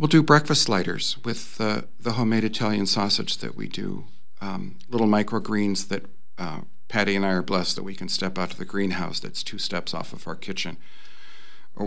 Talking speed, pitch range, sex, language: 195 wpm, 95-105 Hz, male, English